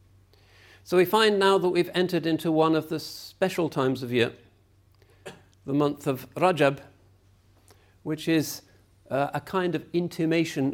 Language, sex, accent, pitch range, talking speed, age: English, male, British, 100-155 Hz, 145 wpm, 50-69